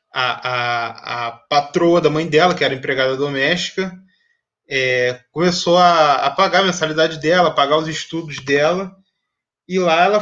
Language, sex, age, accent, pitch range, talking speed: Portuguese, male, 20-39, Brazilian, 145-190 Hz, 160 wpm